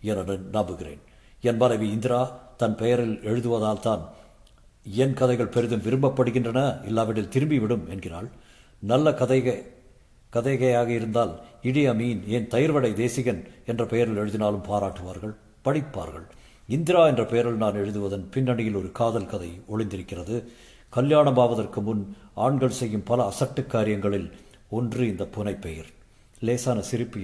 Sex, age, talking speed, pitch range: male, 50-69, 115 wpm, 100-125 Hz